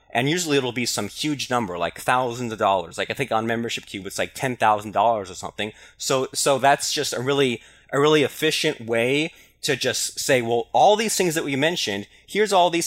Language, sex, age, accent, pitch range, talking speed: English, male, 20-39, American, 115-145 Hz, 210 wpm